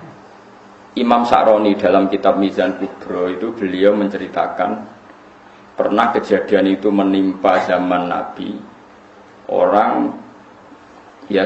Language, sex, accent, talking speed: Indonesian, male, native, 90 wpm